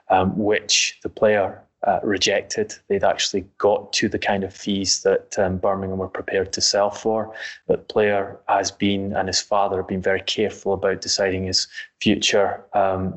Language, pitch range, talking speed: English, 95-105 Hz, 180 wpm